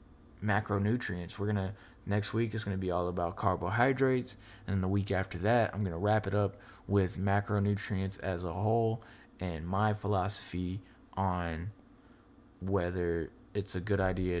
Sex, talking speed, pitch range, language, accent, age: male, 145 wpm, 90-105 Hz, English, American, 20-39